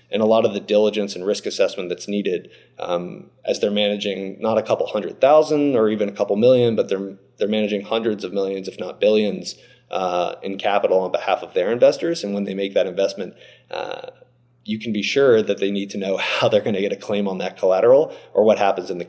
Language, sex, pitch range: English, male, 100-145 Hz